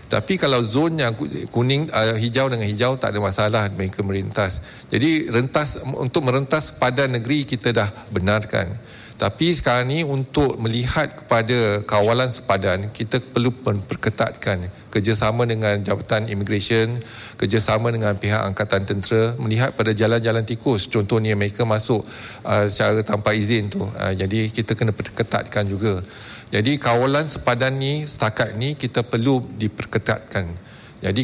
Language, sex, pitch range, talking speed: Malay, male, 105-125 Hz, 135 wpm